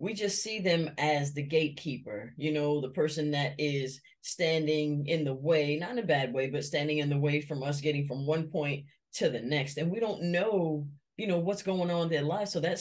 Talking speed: 235 wpm